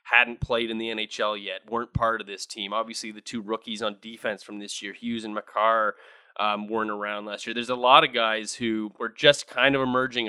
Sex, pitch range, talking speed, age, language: male, 110-140 Hz, 225 wpm, 20-39, English